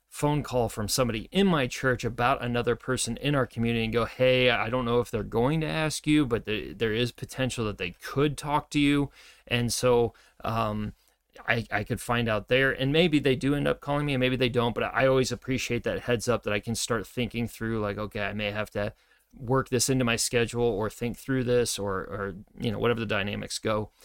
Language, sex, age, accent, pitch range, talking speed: English, male, 30-49, American, 110-135 Hz, 230 wpm